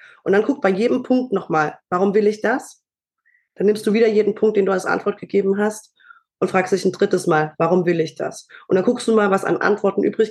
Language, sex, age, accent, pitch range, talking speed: German, female, 20-39, German, 175-215 Hz, 245 wpm